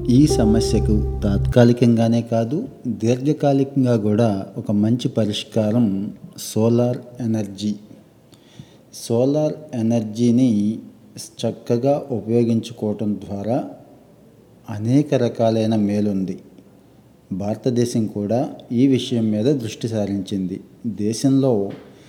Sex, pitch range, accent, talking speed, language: male, 105-125 Hz, native, 75 wpm, Telugu